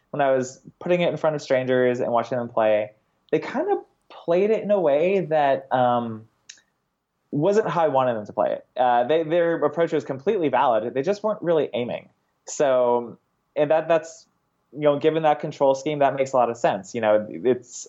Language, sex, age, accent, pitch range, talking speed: English, male, 20-39, American, 120-155 Hz, 205 wpm